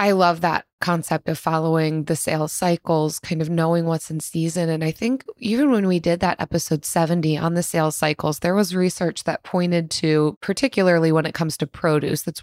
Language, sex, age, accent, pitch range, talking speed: English, female, 20-39, American, 155-200 Hz, 205 wpm